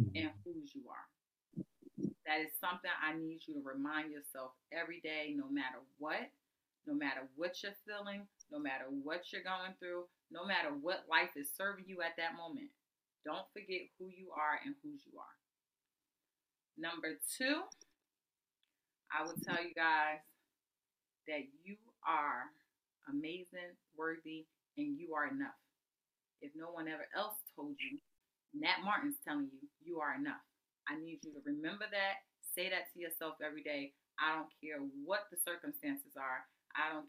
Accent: American